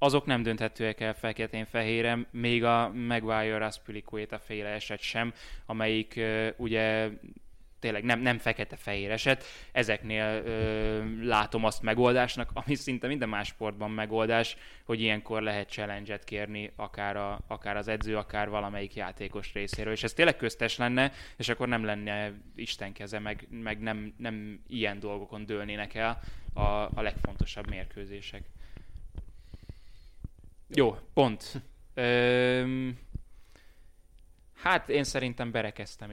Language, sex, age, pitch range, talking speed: Hungarian, male, 10-29, 105-115 Hz, 130 wpm